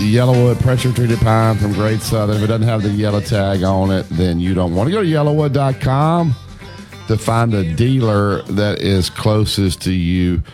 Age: 50-69